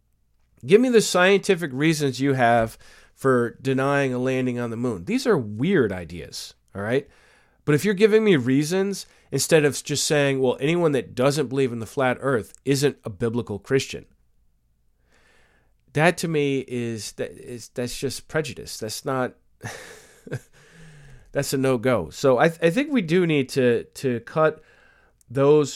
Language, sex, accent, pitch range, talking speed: English, male, American, 125-175 Hz, 160 wpm